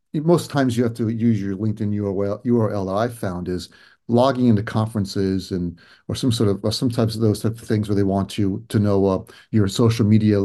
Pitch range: 105-130 Hz